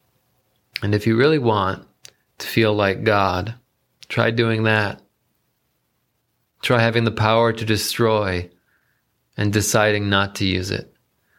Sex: male